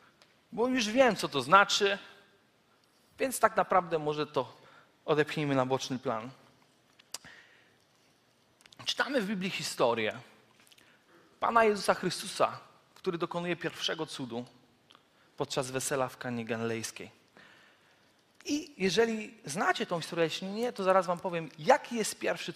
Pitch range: 165-260 Hz